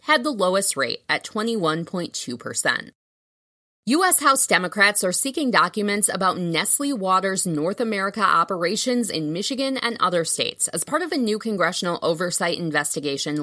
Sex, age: female, 20-39